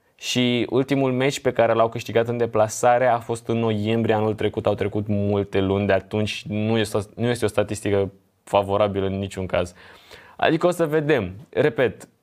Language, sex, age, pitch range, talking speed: English, male, 20-39, 110-130 Hz, 165 wpm